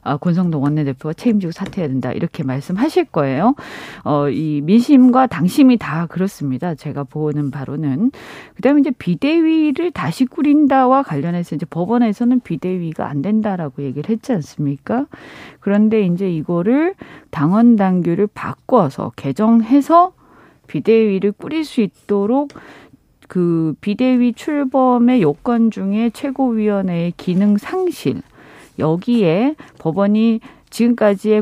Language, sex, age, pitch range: Korean, female, 40-59, 170-250 Hz